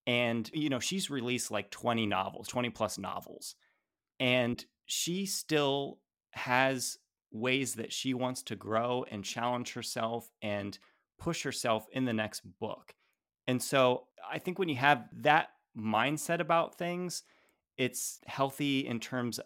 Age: 30-49